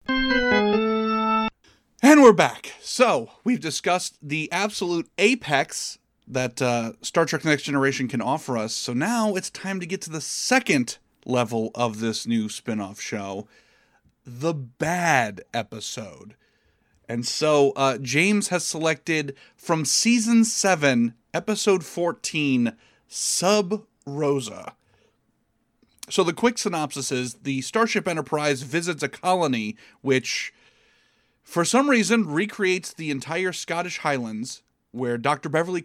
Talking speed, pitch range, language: 120 wpm, 130-185 Hz, English